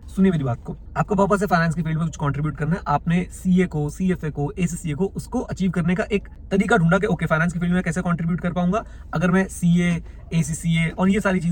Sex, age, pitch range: male, 30-49, 150-200 Hz